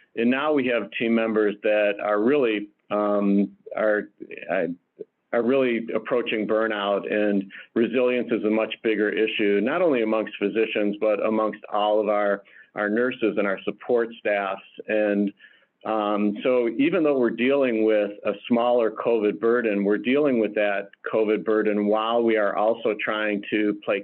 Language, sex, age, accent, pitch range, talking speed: English, male, 50-69, American, 105-115 Hz, 155 wpm